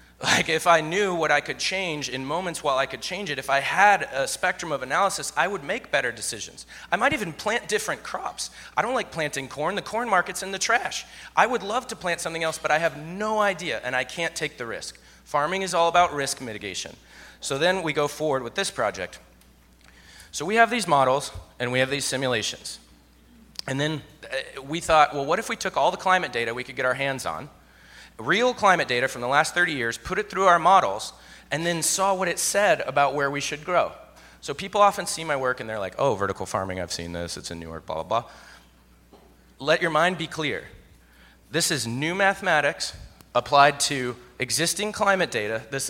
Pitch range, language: 125-175 Hz, English